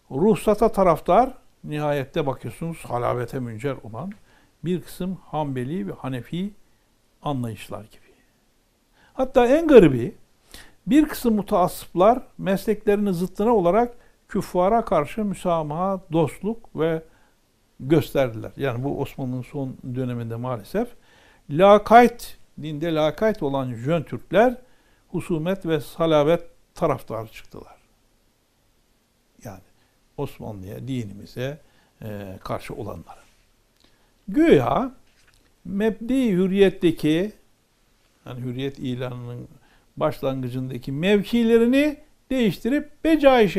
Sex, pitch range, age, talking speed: male, 125-210 Hz, 60-79, 85 wpm